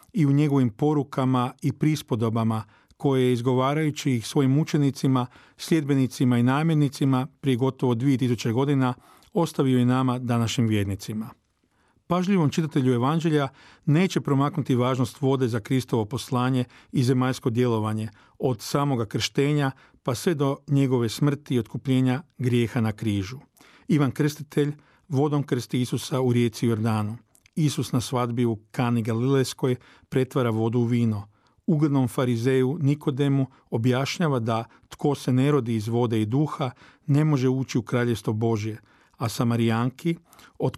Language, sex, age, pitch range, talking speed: Croatian, male, 40-59, 120-145 Hz, 130 wpm